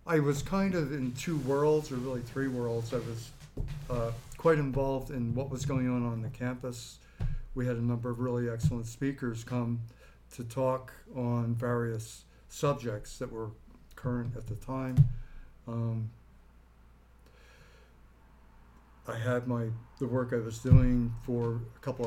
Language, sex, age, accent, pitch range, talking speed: English, male, 50-69, American, 110-130 Hz, 150 wpm